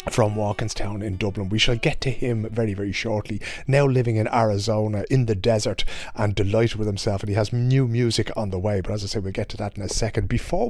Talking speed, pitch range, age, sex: 240 wpm, 105-125 Hz, 30-49, male